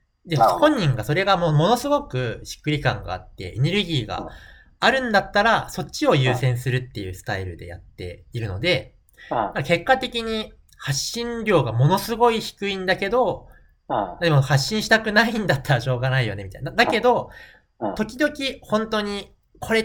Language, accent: Japanese, native